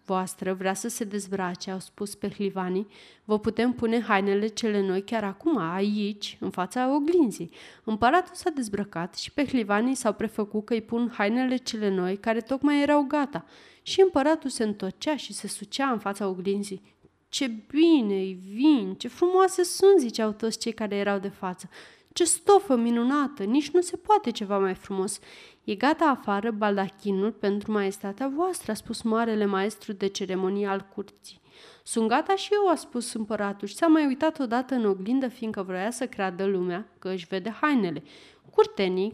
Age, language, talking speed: 30-49, Romanian, 170 wpm